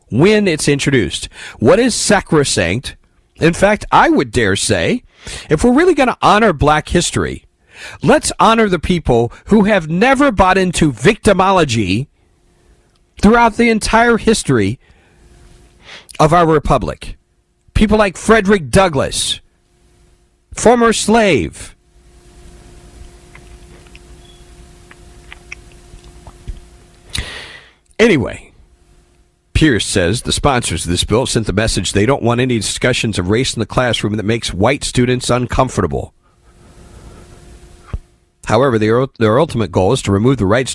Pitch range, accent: 95-155 Hz, American